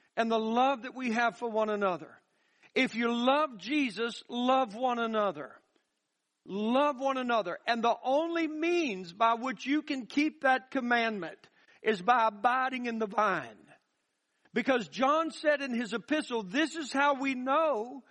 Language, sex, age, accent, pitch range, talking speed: English, male, 60-79, American, 225-285 Hz, 155 wpm